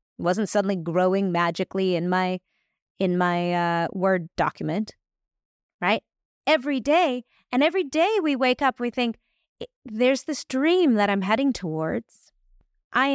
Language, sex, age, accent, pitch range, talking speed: English, female, 30-49, American, 185-245 Hz, 135 wpm